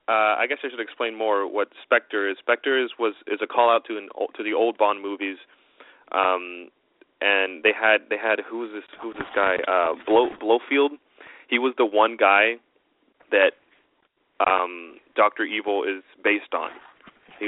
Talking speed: 180 wpm